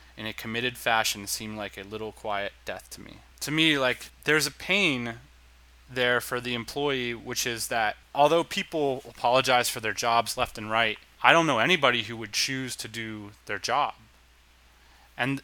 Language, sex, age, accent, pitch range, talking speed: English, male, 20-39, American, 105-130 Hz, 180 wpm